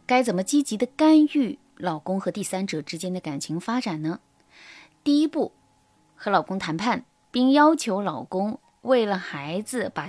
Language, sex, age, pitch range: Chinese, female, 20-39, 180-275 Hz